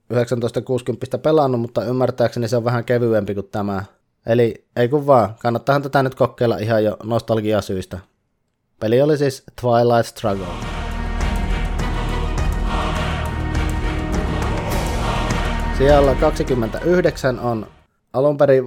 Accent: Finnish